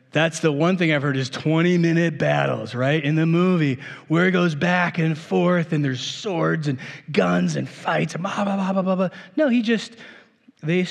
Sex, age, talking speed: male, 30-49, 205 wpm